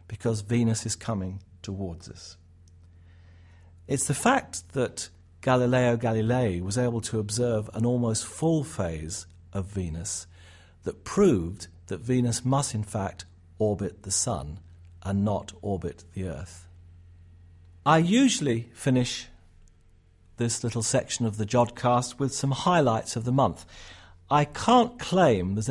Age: 50-69